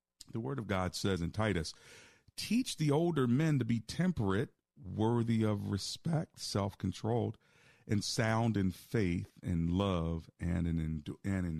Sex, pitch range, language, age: male, 85-120 Hz, English, 40-59